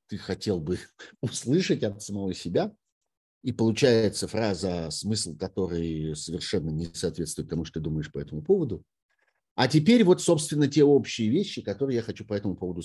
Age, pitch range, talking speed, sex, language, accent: 50-69, 85-120 Hz, 165 wpm, male, Russian, native